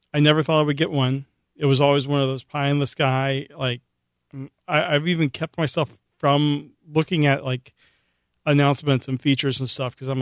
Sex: male